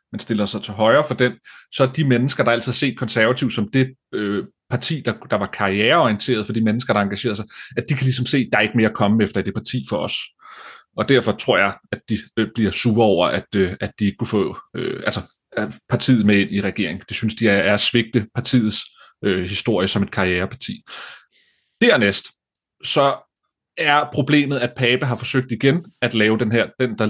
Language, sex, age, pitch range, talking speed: Danish, male, 30-49, 110-145 Hz, 215 wpm